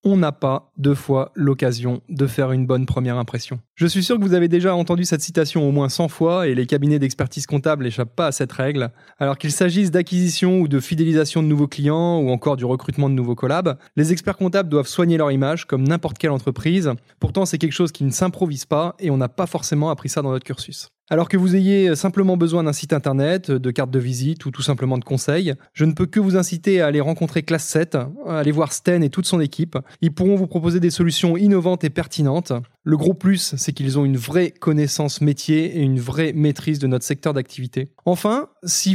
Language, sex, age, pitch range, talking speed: French, male, 20-39, 135-175 Hz, 230 wpm